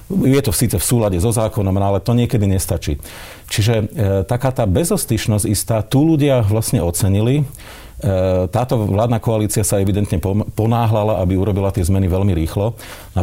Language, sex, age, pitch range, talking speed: Slovak, male, 40-59, 95-115 Hz, 150 wpm